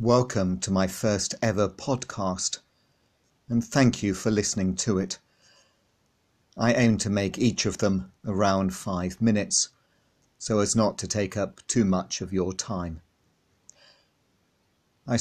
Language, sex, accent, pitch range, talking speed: English, male, British, 100-115 Hz, 140 wpm